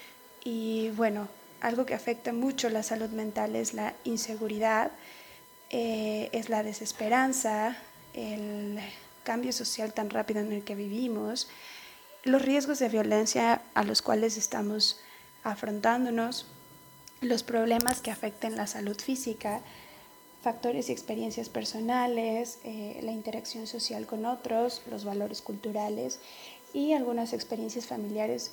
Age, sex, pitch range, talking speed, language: 30-49, female, 220-245 Hz, 120 wpm, Spanish